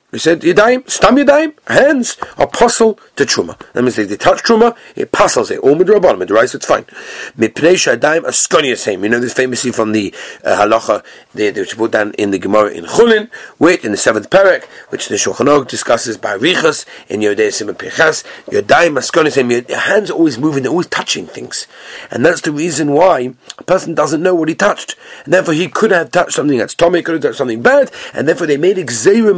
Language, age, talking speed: English, 40-59, 205 wpm